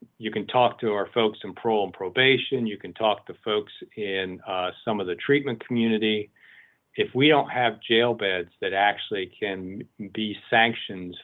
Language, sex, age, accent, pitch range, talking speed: English, male, 50-69, American, 100-120 Hz, 175 wpm